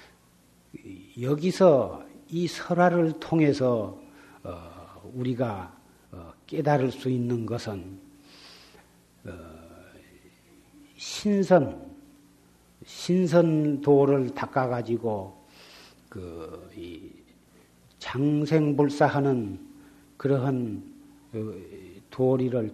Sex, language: male, Korean